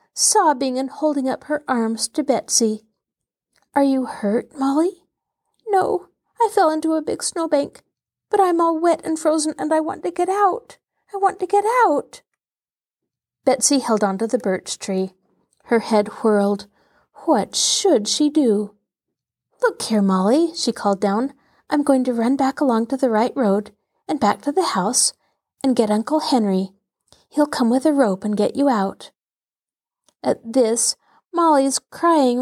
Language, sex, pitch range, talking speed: English, female, 220-360 Hz, 165 wpm